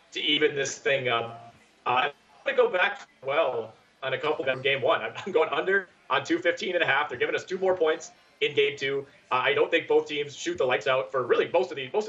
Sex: male